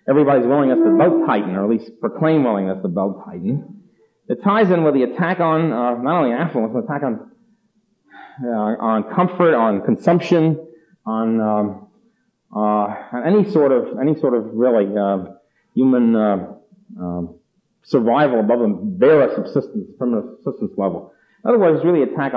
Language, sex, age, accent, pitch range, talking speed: English, male, 40-59, American, 115-180 Hz, 165 wpm